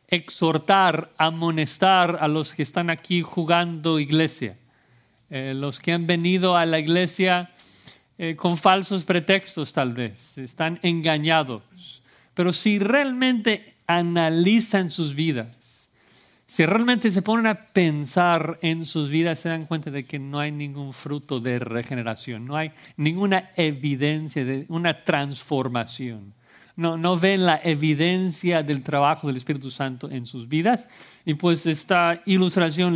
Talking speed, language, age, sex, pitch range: 135 wpm, Spanish, 50-69, male, 140-175 Hz